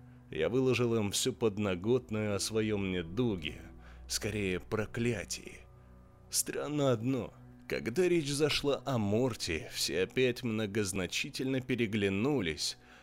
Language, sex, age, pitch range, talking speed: Russian, male, 20-39, 100-145 Hz, 95 wpm